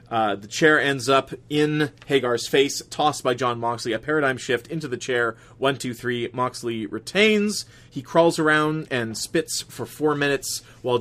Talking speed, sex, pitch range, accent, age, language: 175 wpm, male, 120-145 Hz, American, 30-49, English